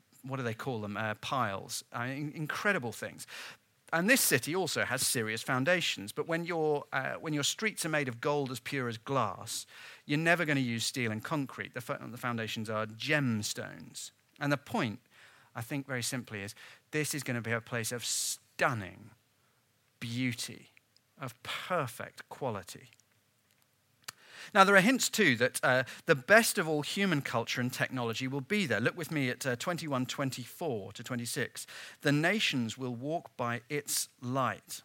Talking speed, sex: 175 wpm, male